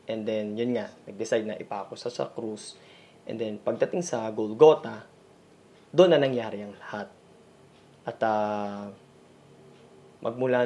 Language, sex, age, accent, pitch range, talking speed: Filipino, male, 20-39, native, 110-140 Hz, 125 wpm